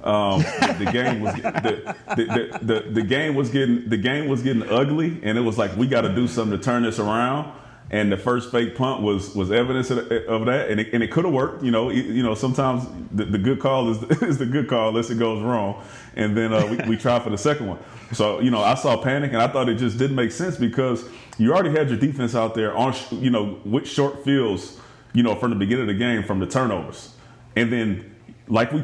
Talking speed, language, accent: 250 wpm, English, American